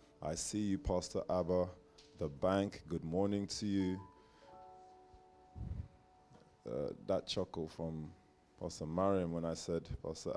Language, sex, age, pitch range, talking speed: English, male, 20-39, 80-95 Hz, 120 wpm